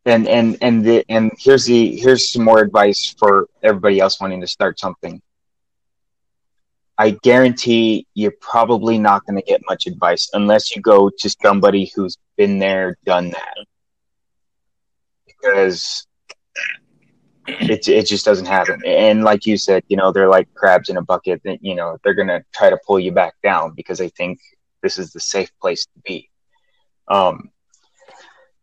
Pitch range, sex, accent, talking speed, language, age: 95-115 Hz, male, American, 165 wpm, English, 20-39